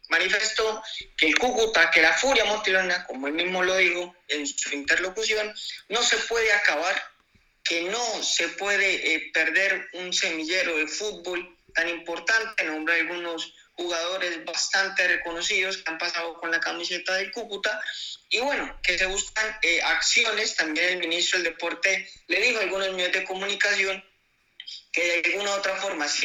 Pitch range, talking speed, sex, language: 170-210 Hz, 165 wpm, male, Spanish